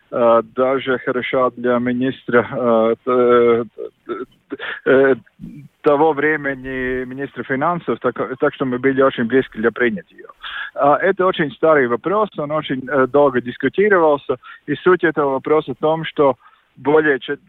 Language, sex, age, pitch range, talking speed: Russian, male, 50-69, 125-145 Hz, 125 wpm